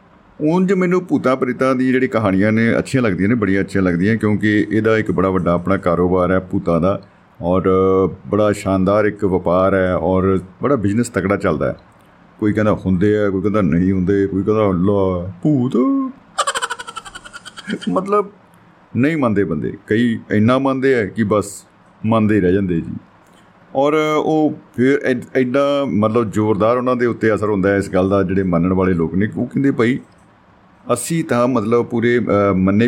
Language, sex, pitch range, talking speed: Punjabi, male, 95-130 Hz, 160 wpm